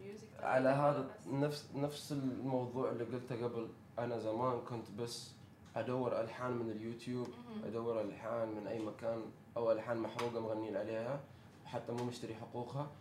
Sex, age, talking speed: male, 20-39, 140 wpm